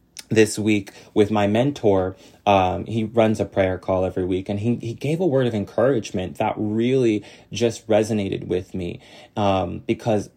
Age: 30-49